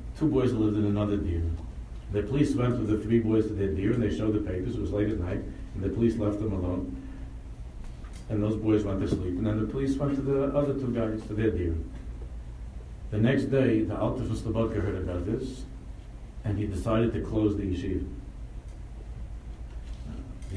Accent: American